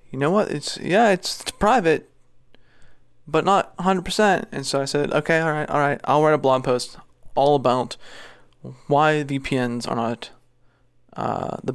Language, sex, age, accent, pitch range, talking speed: English, male, 20-39, American, 125-150 Hz, 165 wpm